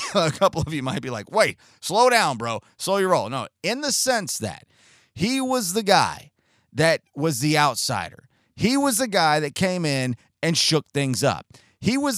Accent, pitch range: American, 130-175 Hz